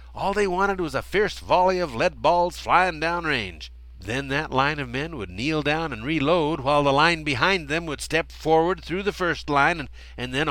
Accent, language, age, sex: American, English, 50-69, male